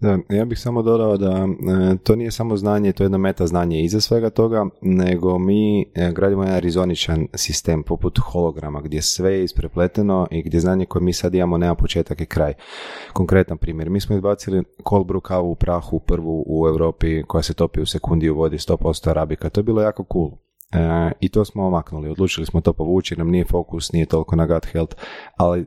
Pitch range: 80-95 Hz